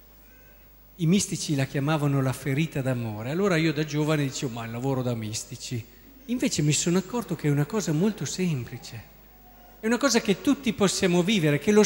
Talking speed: 180 wpm